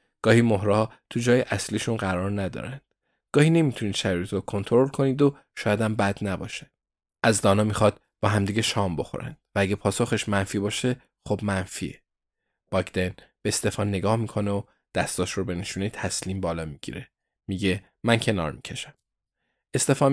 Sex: male